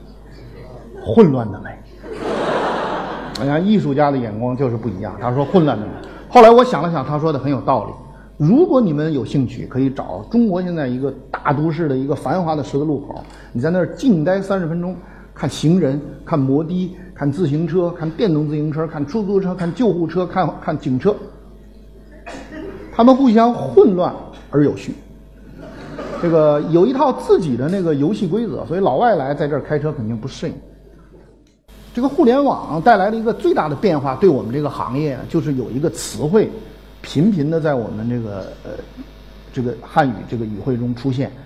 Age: 50-69